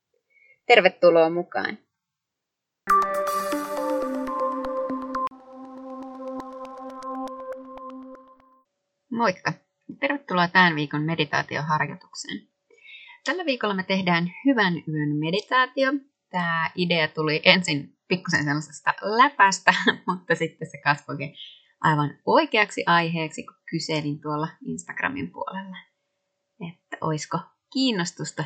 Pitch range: 160-260 Hz